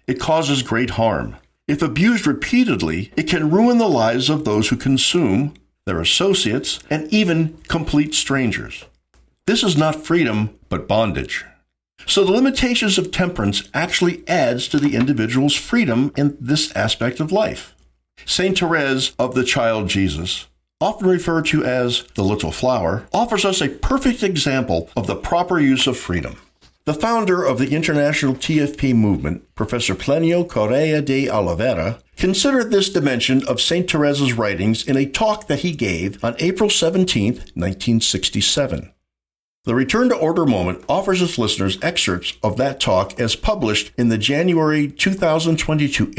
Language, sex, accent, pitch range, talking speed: English, male, American, 110-170 Hz, 150 wpm